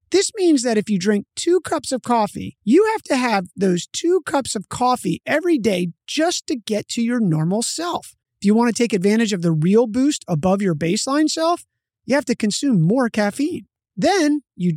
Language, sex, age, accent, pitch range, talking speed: English, male, 30-49, American, 190-285 Hz, 205 wpm